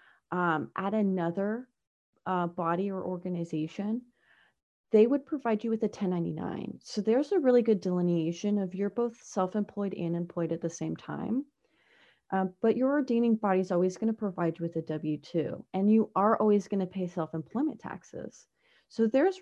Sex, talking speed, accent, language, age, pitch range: female, 165 wpm, American, English, 30-49, 170-215 Hz